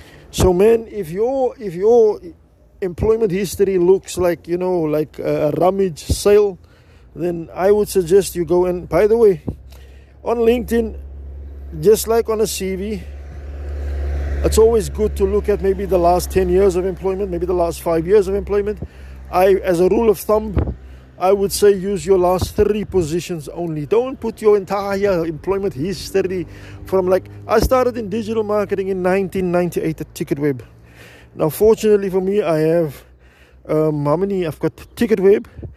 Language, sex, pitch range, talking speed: English, male, 135-200 Hz, 165 wpm